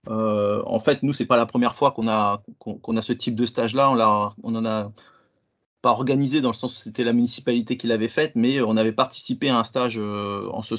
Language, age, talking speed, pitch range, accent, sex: French, 30-49, 250 wpm, 110-130 Hz, French, male